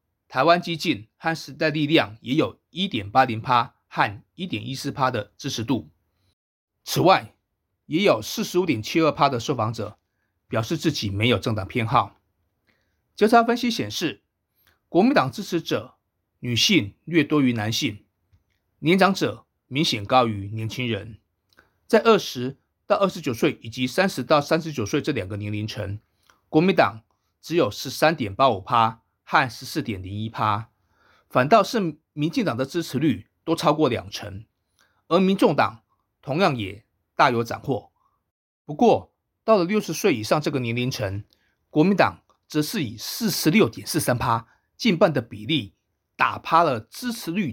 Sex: male